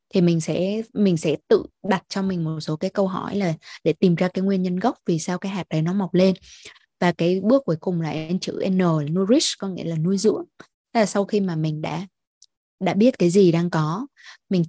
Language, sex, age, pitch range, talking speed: Vietnamese, female, 20-39, 170-220 Hz, 235 wpm